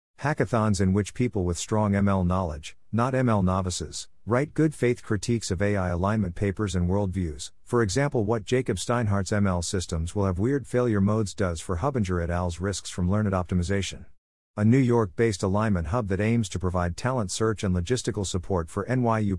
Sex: male